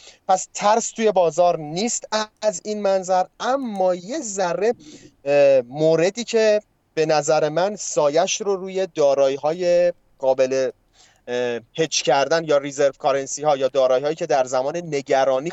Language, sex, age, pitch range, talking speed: Persian, male, 30-49, 140-185 Hz, 135 wpm